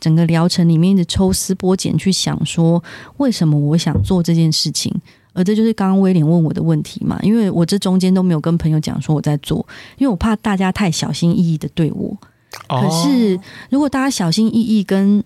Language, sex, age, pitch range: Chinese, female, 30-49, 160-200 Hz